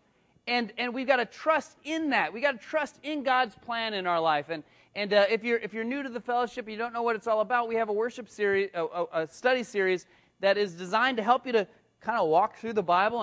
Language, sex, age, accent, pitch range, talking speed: English, male, 30-49, American, 200-250 Hz, 270 wpm